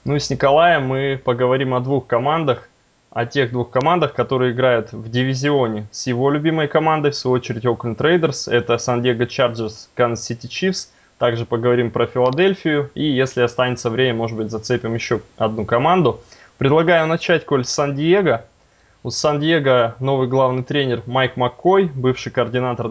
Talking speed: 160 wpm